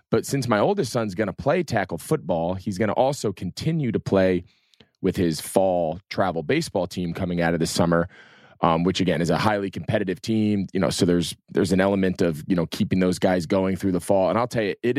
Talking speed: 230 wpm